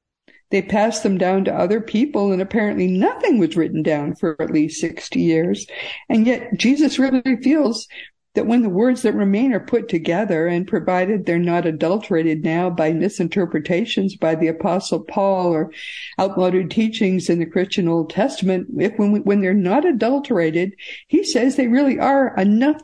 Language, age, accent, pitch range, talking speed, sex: English, 60-79, American, 175-245 Hz, 170 wpm, female